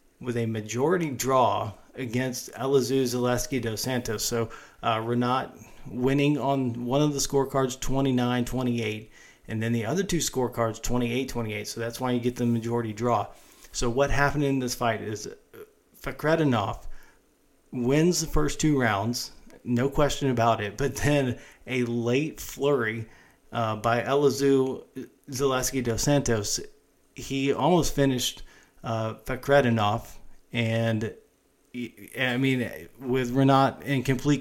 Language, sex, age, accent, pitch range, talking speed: English, male, 40-59, American, 115-135 Hz, 125 wpm